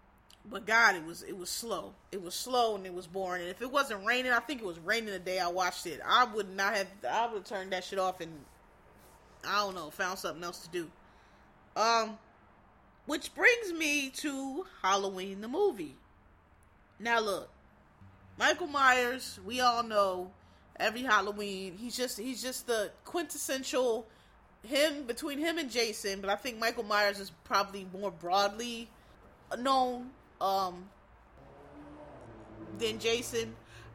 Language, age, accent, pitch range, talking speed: English, 20-39, American, 185-255 Hz, 160 wpm